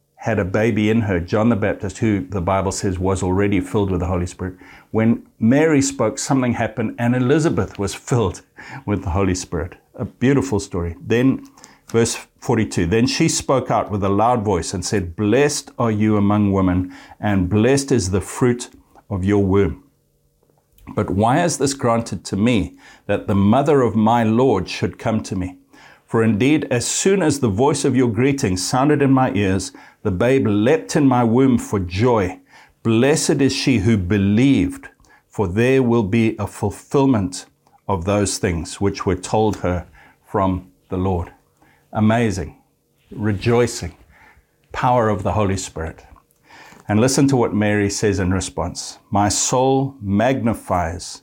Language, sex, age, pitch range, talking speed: English, male, 60-79, 95-125 Hz, 165 wpm